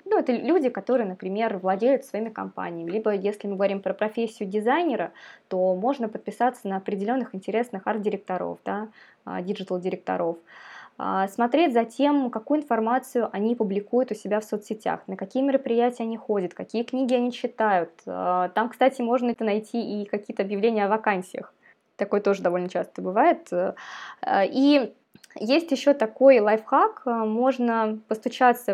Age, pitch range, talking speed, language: 20-39, 195-255 Hz, 135 wpm, Russian